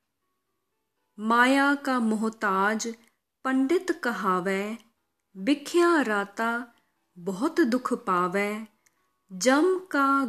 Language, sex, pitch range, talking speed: Hindi, female, 195-265 Hz, 70 wpm